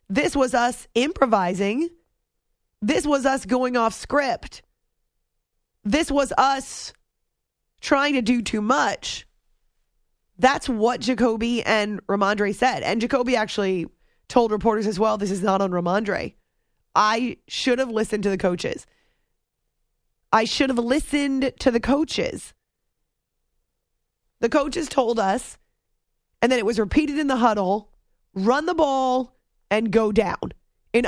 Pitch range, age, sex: 215-270 Hz, 30-49, female